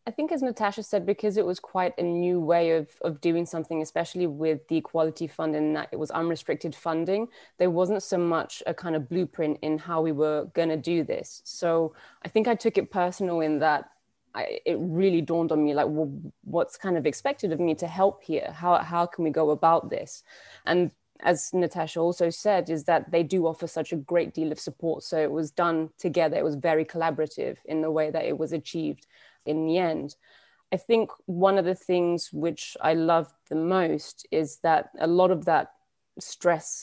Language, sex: English, female